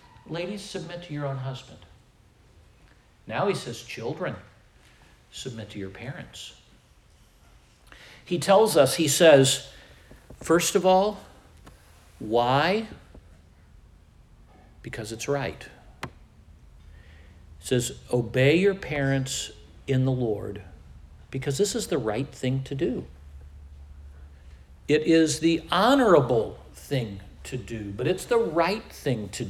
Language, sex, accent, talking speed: English, male, American, 110 wpm